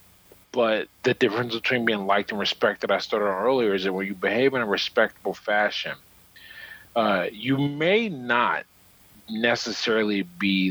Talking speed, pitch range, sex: 150 wpm, 95-120 Hz, male